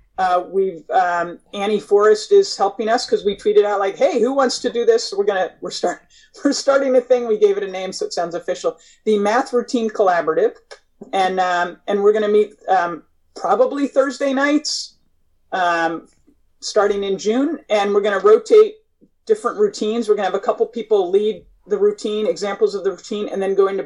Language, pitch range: English, 175-245 Hz